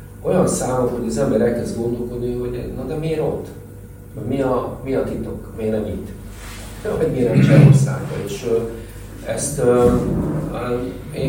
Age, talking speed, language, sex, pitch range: 40-59, 145 wpm, Hungarian, male, 95-115 Hz